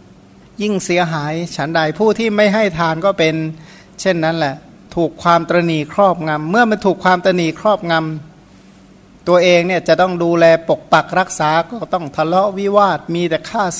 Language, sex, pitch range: Thai, male, 155-190 Hz